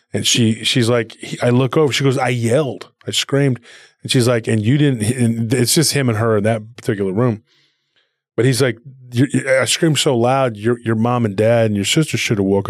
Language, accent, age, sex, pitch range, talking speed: English, American, 20-39, male, 105-125 Hz, 220 wpm